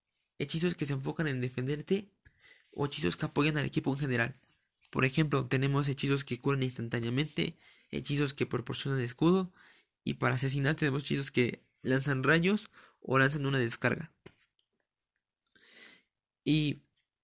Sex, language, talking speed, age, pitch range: male, Spanish, 130 wpm, 20-39, 130-155 Hz